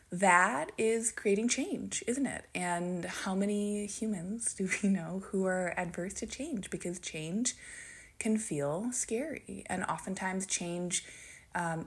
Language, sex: English, female